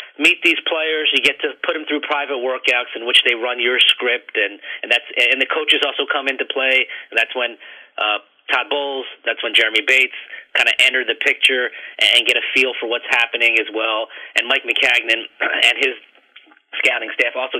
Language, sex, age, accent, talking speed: English, male, 30-49, American, 200 wpm